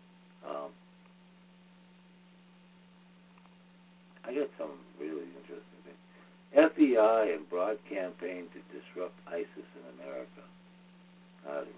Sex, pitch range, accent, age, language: male, 110-180 Hz, American, 60-79, English